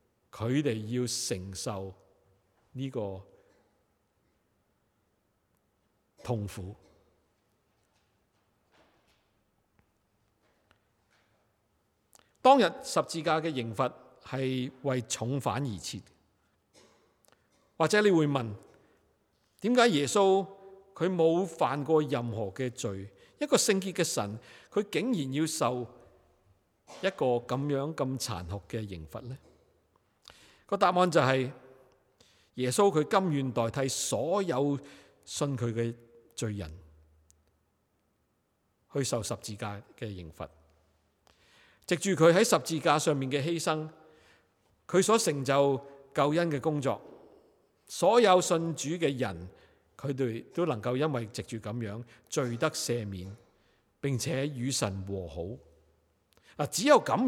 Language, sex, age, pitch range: Chinese, male, 50-69, 100-150 Hz